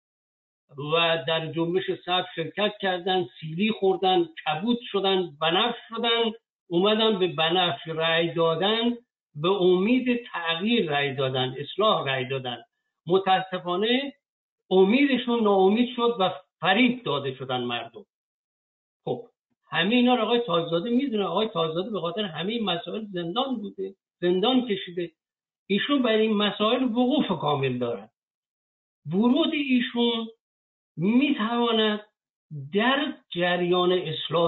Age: 60-79